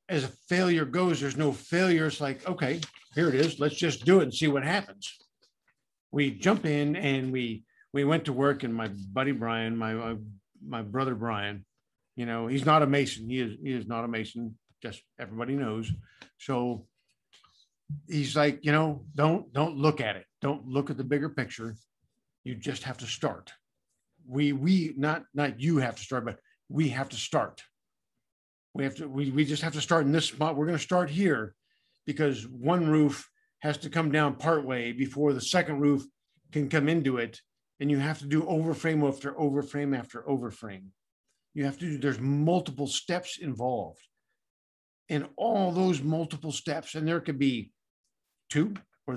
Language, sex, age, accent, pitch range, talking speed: English, male, 50-69, American, 120-155 Hz, 185 wpm